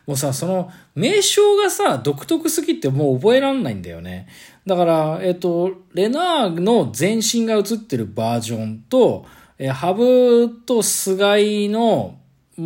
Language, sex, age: Japanese, male, 20-39